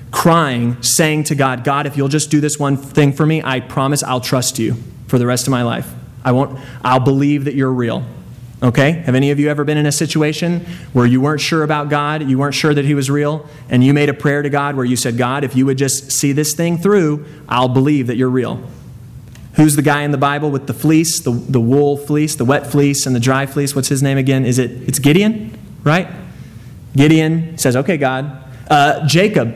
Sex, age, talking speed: male, 20-39, 230 wpm